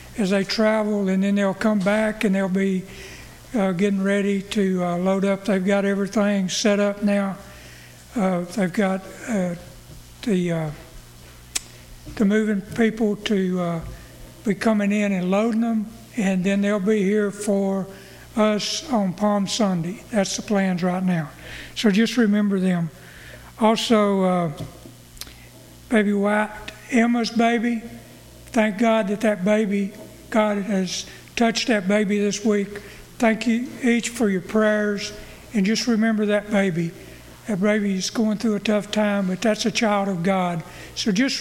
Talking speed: 150 wpm